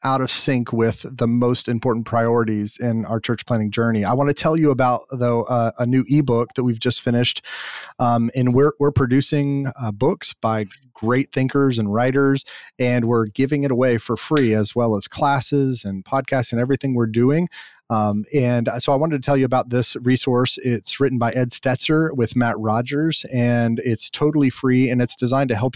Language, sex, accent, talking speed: English, male, American, 195 wpm